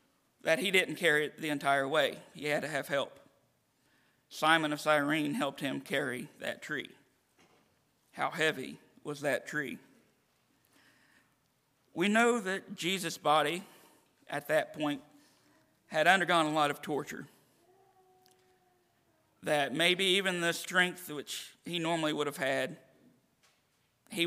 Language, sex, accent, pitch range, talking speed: English, male, American, 150-185 Hz, 130 wpm